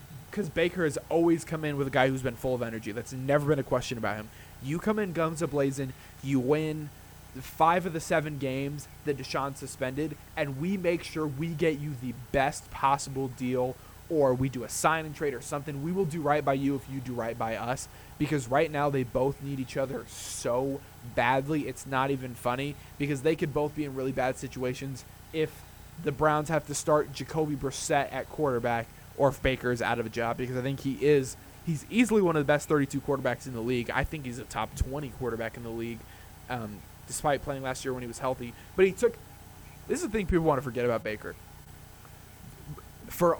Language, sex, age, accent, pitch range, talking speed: English, male, 20-39, American, 125-155 Hz, 220 wpm